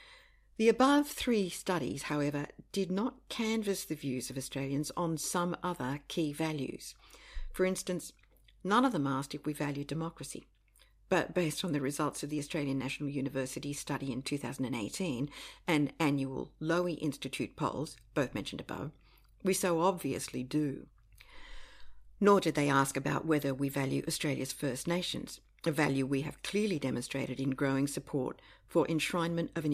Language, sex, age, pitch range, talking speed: English, female, 50-69, 140-175 Hz, 155 wpm